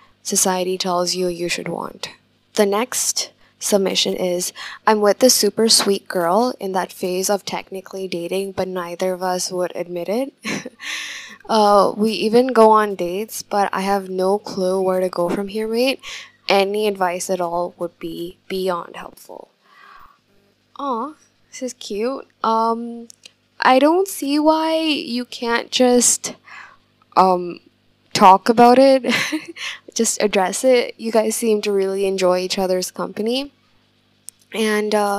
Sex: female